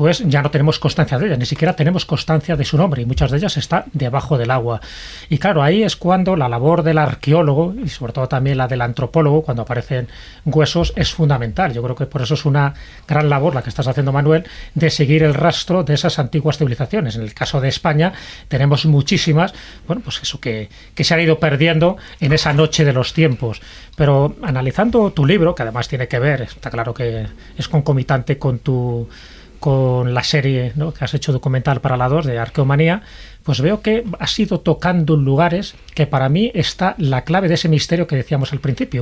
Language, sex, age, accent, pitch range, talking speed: Spanish, male, 30-49, Spanish, 135-165 Hz, 210 wpm